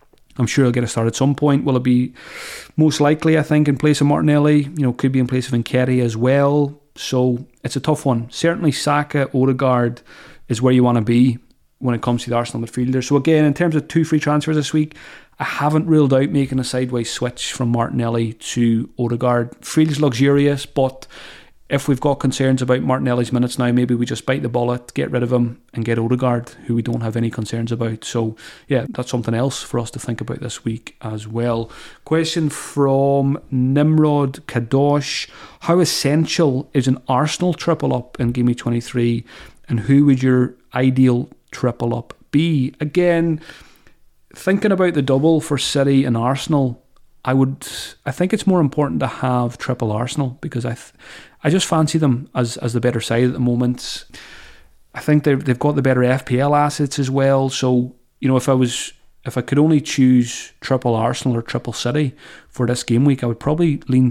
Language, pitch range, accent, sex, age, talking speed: English, 120-145 Hz, British, male, 30-49, 195 wpm